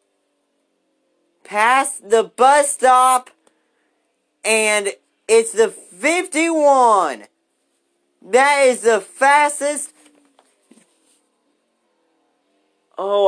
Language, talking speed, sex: English, 60 wpm, male